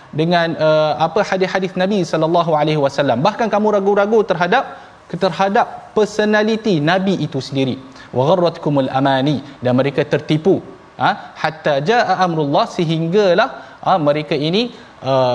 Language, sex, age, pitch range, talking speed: Malayalam, male, 20-39, 135-175 Hz, 120 wpm